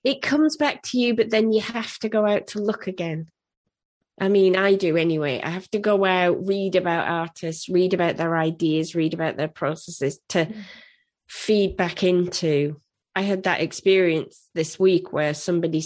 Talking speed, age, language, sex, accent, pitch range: 180 wpm, 20-39, English, female, British, 155-190 Hz